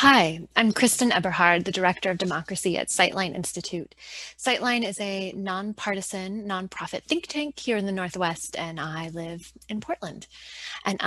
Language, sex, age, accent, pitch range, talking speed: English, female, 20-39, American, 170-215 Hz, 150 wpm